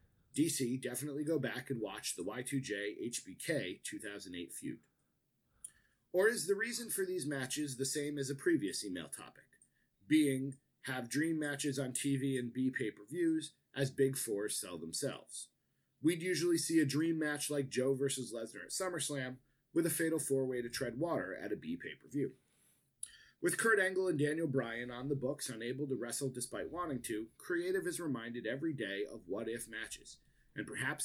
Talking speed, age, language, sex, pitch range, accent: 160 wpm, 30-49, English, male, 120-150 Hz, American